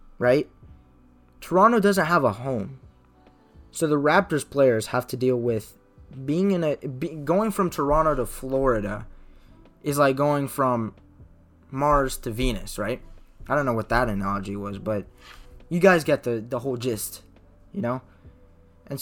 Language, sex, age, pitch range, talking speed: English, male, 20-39, 105-140 Hz, 155 wpm